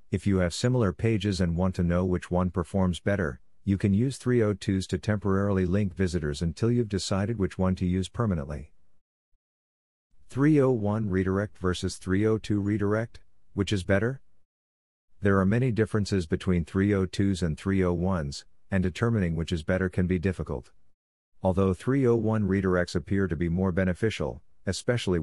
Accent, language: American, English